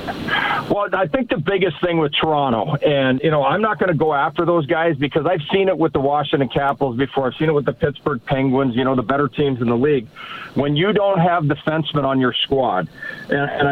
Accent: American